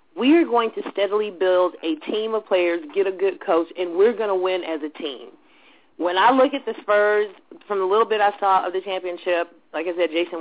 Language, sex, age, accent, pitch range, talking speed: English, female, 30-49, American, 170-220 Hz, 235 wpm